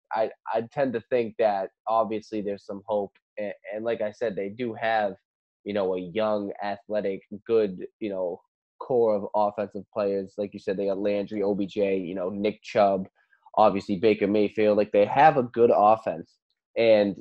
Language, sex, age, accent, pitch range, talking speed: English, male, 10-29, American, 100-120 Hz, 180 wpm